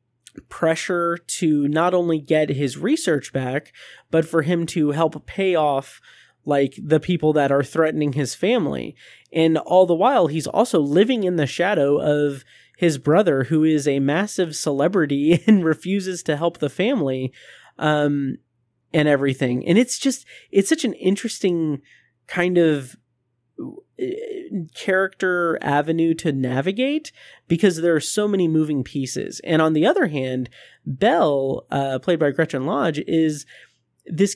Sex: male